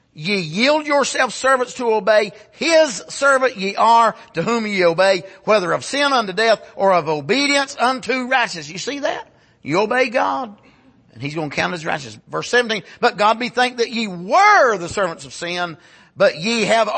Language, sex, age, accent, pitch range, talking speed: English, male, 50-69, American, 190-260 Hz, 185 wpm